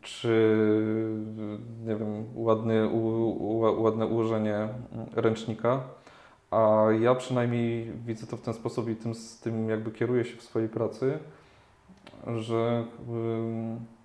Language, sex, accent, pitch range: Polish, male, native, 110-120 Hz